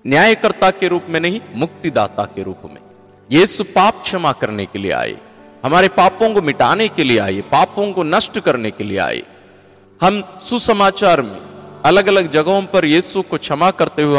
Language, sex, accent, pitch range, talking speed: Hindi, male, native, 125-185 Hz, 180 wpm